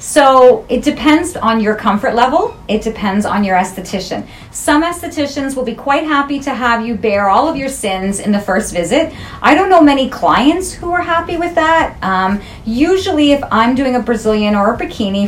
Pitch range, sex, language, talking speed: 210-285 Hz, female, English, 195 wpm